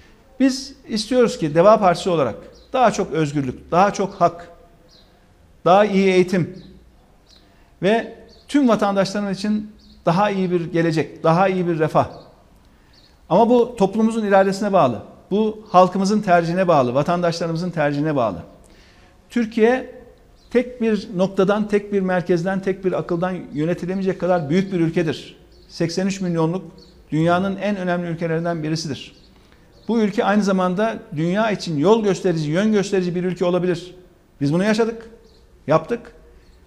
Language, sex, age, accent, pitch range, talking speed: Turkish, male, 50-69, native, 175-215 Hz, 130 wpm